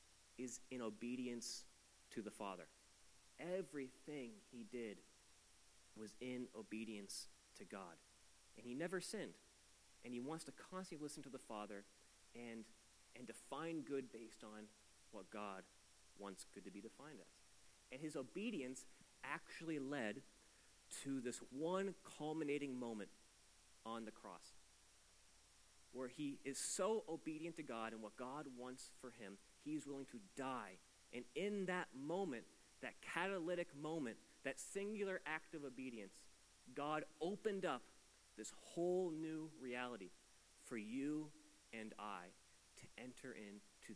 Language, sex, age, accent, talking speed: English, male, 30-49, American, 130 wpm